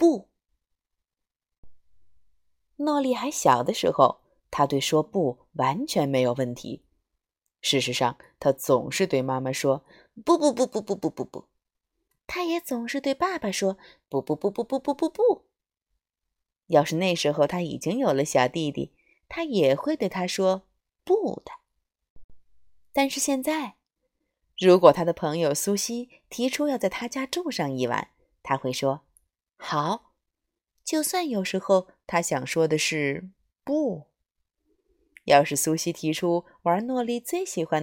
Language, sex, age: Chinese, female, 20-39